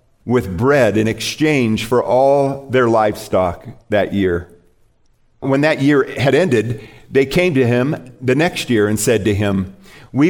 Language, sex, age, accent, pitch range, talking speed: English, male, 50-69, American, 105-135 Hz, 155 wpm